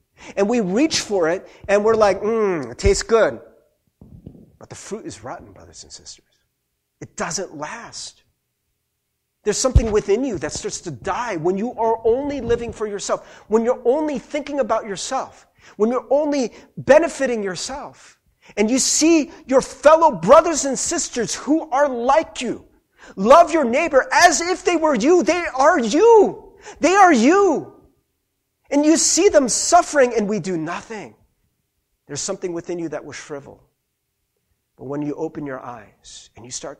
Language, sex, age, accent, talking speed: English, male, 40-59, American, 165 wpm